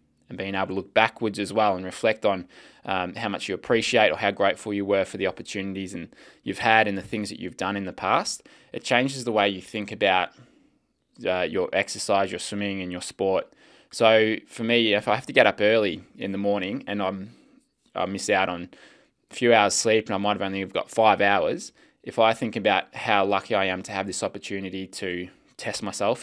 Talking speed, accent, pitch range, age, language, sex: 220 wpm, Australian, 95-110 Hz, 20-39, English, male